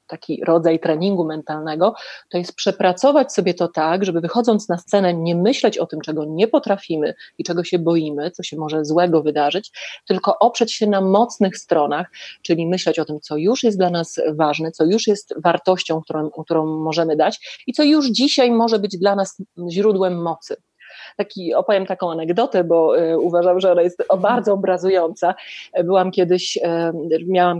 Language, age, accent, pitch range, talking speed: Polish, 30-49, native, 160-195 Hz, 175 wpm